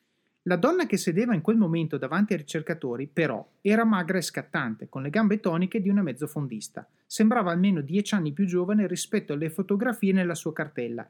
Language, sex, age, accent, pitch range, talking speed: Italian, male, 30-49, native, 160-210 Hz, 185 wpm